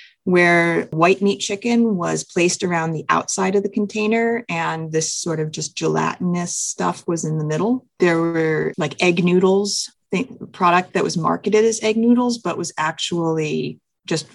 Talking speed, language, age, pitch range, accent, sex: 165 wpm, English, 30-49, 165-205 Hz, American, female